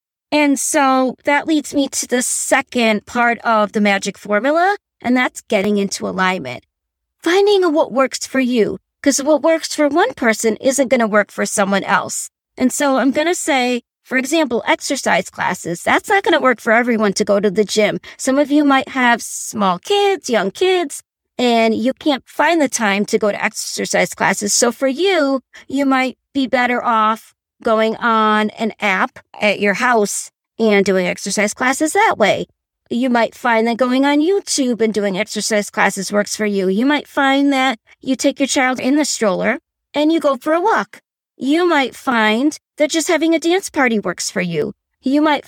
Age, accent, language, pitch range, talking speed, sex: 40-59, American, English, 215-295 Hz, 190 wpm, female